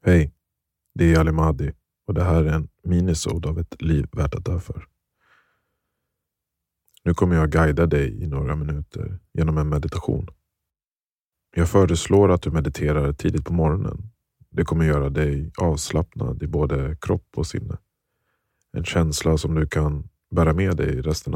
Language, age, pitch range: Swedish, 30-49, 75-85 Hz